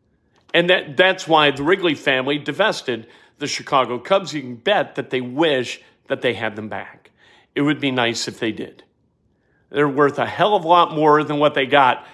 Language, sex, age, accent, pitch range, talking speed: English, male, 50-69, American, 145-180 Hz, 205 wpm